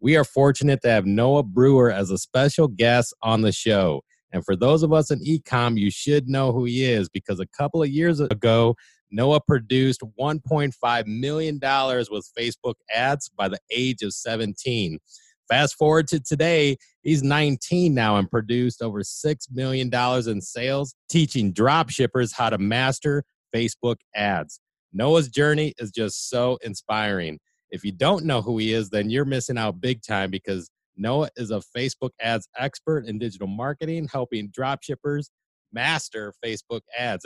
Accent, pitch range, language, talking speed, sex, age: American, 110-145 Hz, English, 165 wpm, male, 30-49